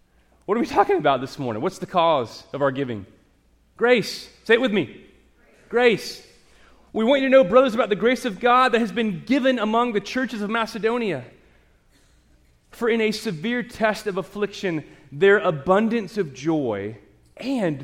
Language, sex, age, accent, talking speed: English, male, 30-49, American, 170 wpm